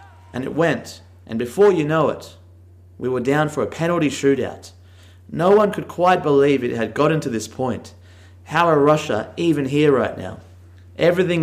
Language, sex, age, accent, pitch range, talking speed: English, male, 30-49, Australian, 90-145 Hz, 180 wpm